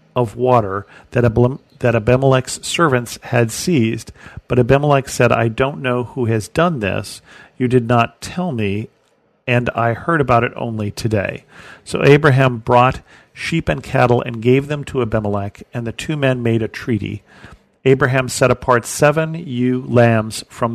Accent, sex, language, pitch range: American, male, English, 115-130 Hz